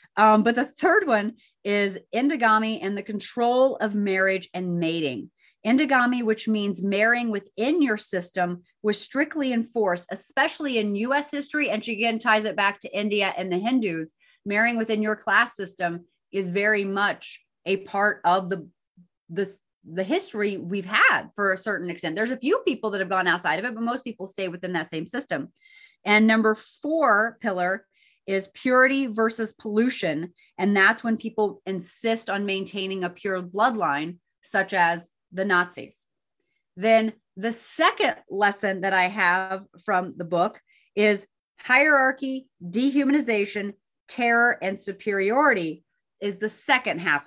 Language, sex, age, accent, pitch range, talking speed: English, female, 30-49, American, 190-235 Hz, 150 wpm